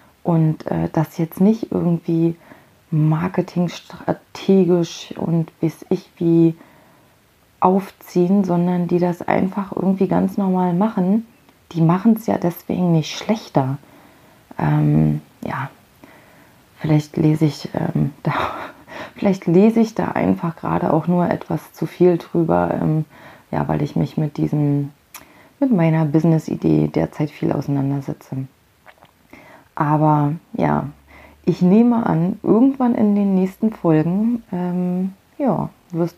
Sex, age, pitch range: female, 30-49, 150-195 Hz